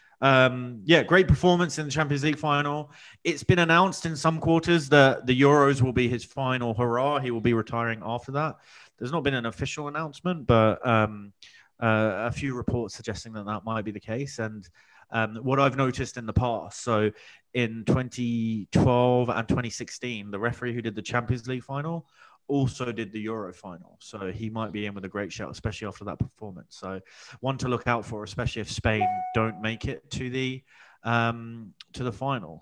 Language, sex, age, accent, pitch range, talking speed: English, male, 30-49, British, 110-140 Hz, 195 wpm